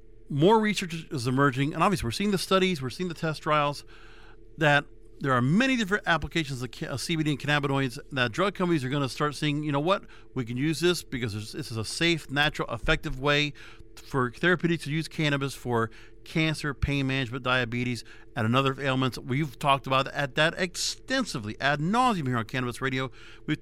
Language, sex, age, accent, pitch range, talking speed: English, male, 50-69, American, 125-165 Hz, 190 wpm